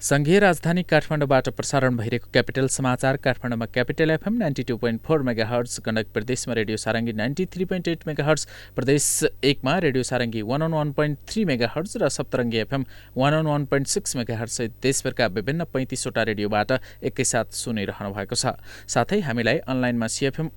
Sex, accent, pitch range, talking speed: male, Indian, 115-145 Hz, 100 wpm